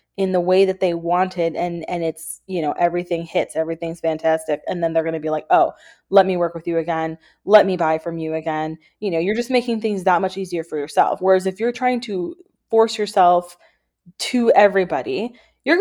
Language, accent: English, American